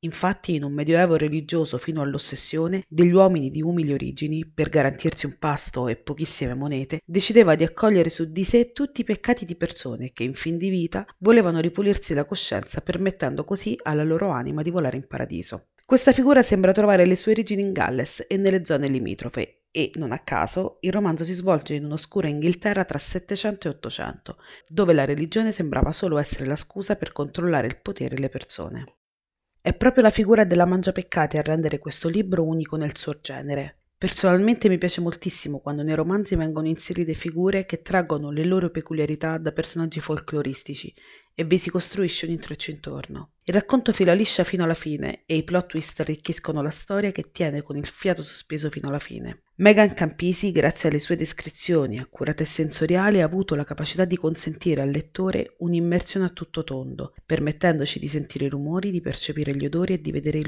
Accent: native